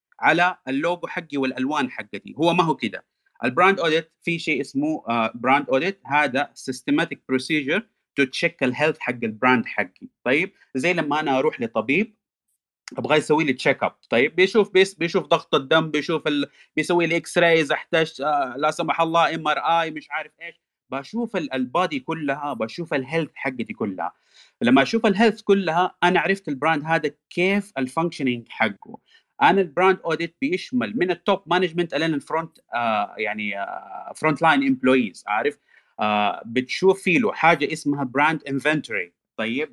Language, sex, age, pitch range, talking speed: Arabic, male, 30-49, 145-185 Hz, 150 wpm